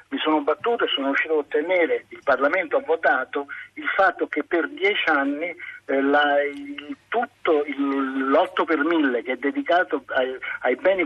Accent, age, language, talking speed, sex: native, 50-69, Italian, 175 wpm, male